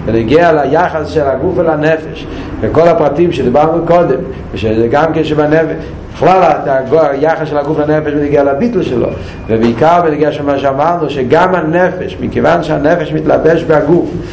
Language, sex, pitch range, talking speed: Hebrew, male, 115-160 Hz, 125 wpm